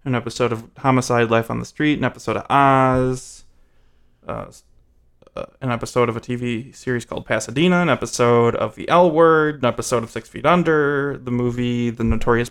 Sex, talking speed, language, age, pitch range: male, 175 wpm, English, 20-39, 110-135 Hz